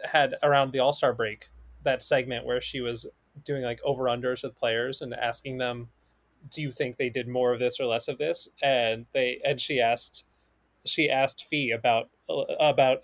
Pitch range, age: 120-155 Hz, 20-39